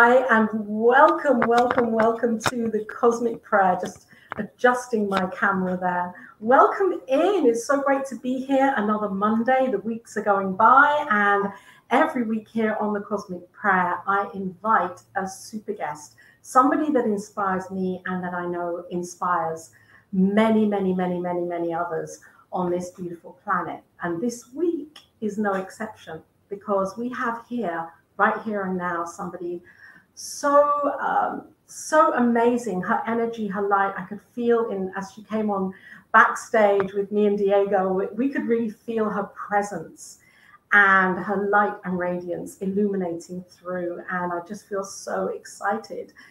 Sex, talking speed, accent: female, 150 wpm, British